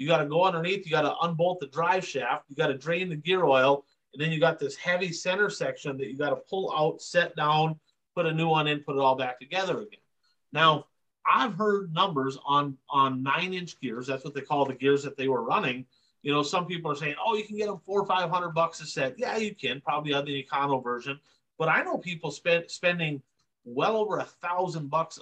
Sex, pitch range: male, 140-180 Hz